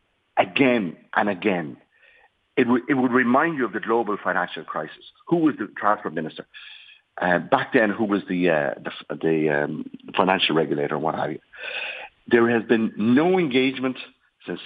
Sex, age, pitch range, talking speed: male, 50-69, 105-145 Hz, 160 wpm